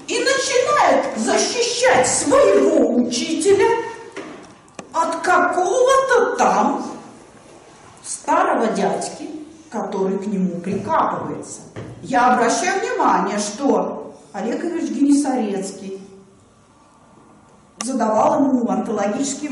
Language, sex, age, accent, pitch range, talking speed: Russian, female, 40-59, native, 250-390 Hz, 70 wpm